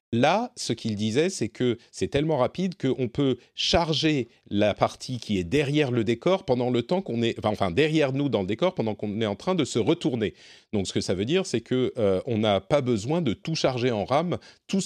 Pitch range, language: 105-155 Hz, French